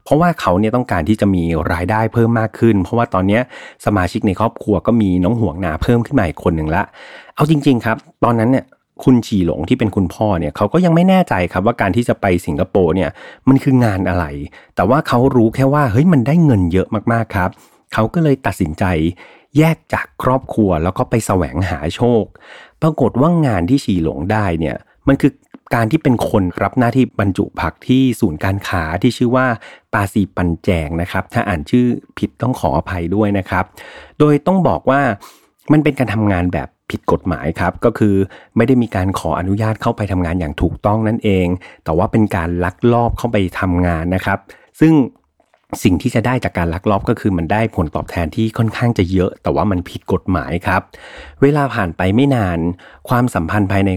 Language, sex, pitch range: Thai, male, 90-120 Hz